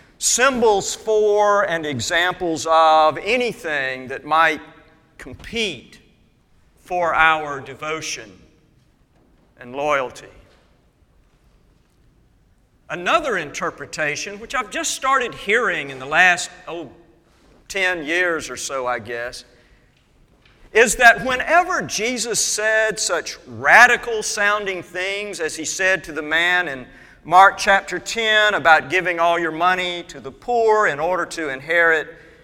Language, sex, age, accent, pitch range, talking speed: English, male, 50-69, American, 160-215 Hz, 115 wpm